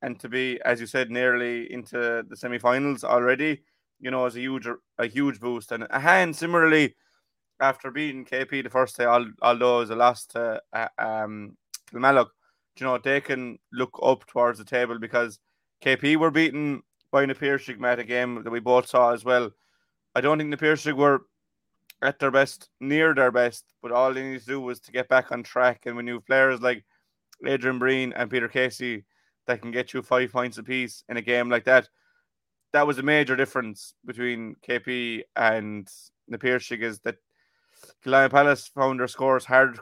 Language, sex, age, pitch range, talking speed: English, male, 20-39, 120-135 Hz, 190 wpm